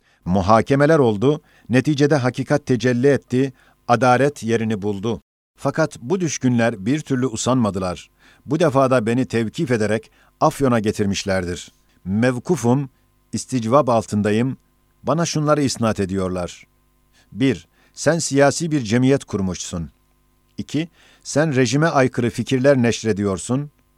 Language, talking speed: Turkish, 105 wpm